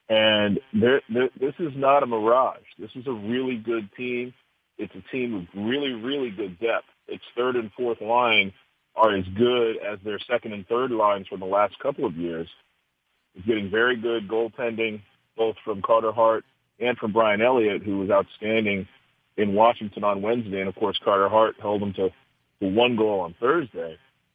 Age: 40-59